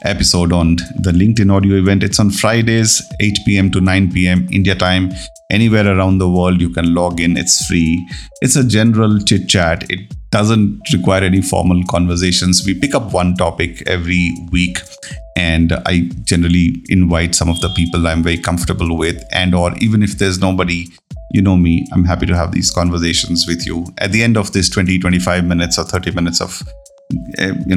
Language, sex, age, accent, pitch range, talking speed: English, male, 30-49, Indian, 85-100 Hz, 185 wpm